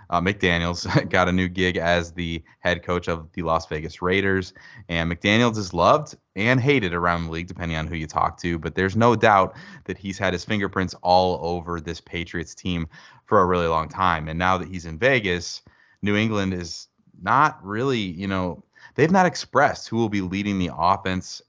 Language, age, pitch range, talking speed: English, 20-39, 85-105 Hz, 200 wpm